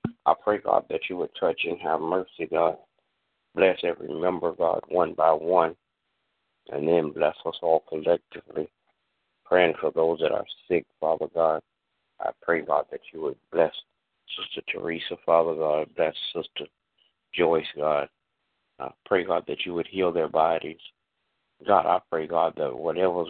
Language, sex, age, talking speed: English, male, 60-79, 160 wpm